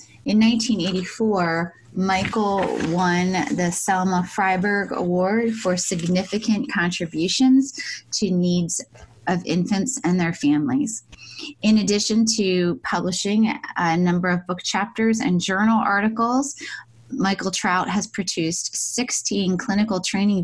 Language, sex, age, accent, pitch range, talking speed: English, female, 20-39, American, 165-200 Hz, 110 wpm